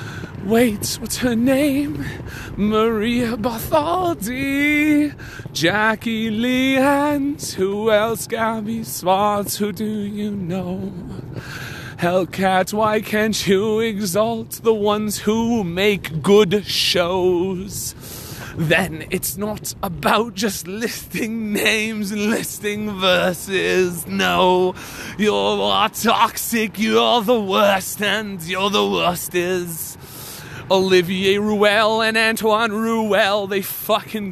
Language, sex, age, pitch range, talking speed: English, male, 30-49, 180-220 Hz, 100 wpm